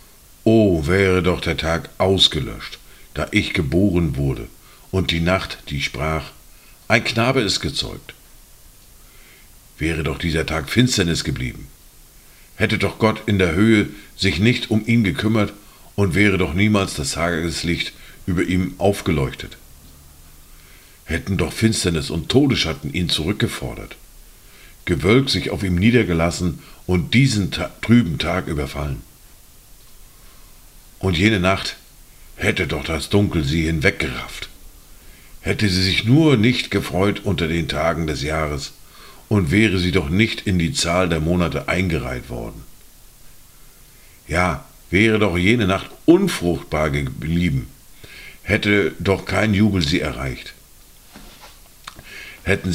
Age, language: 50-69, German